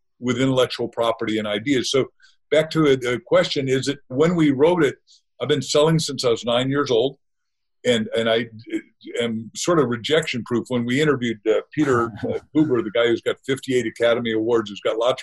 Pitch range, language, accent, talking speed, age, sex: 120-170 Hz, English, American, 195 wpm, 50-69, male